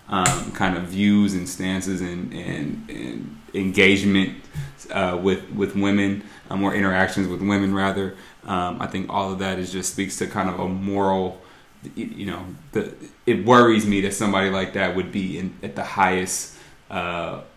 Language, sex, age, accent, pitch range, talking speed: English, male, 20-39, American, 95-115 Hz, 175 wpm